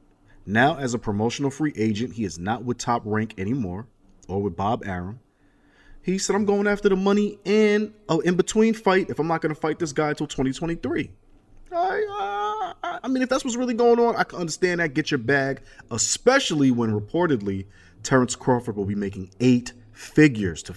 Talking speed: 190 wpm